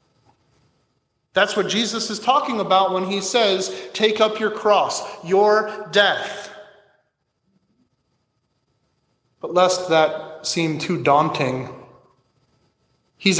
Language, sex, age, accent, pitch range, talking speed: English, male, 30-49, American, 150-205 Hz, 100 wpm